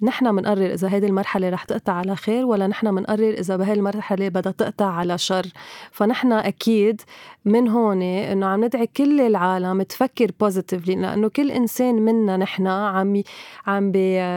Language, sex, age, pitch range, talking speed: Arabic, female, 30-49, 195-230 Hz, 150 wpm